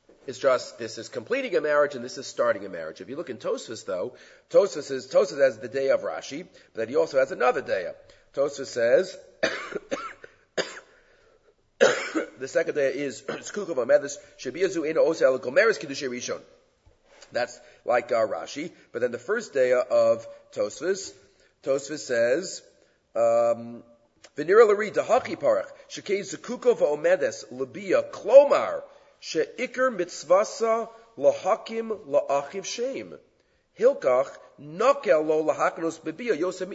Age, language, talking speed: 40-59, English, 120 wpm